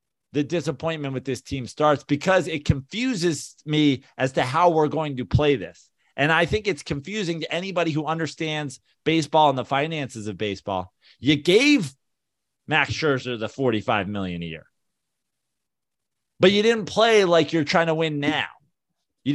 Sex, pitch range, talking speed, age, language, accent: male, 130-180 Hz, 165 wpm, 30-49, English, American